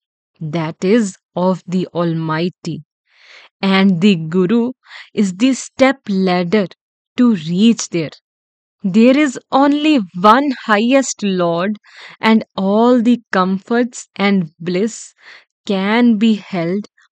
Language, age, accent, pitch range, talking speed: English, 20-39, Indian, 180-235 Hz, 105 wpm